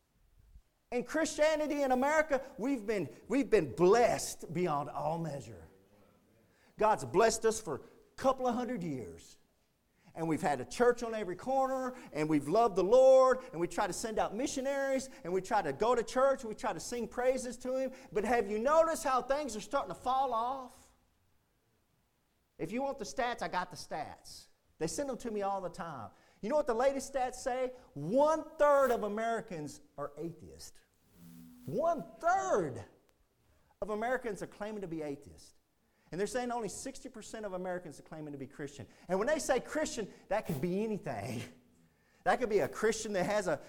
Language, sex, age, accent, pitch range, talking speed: English, male, 40-59, American, 160-260 Hz, 185 wpm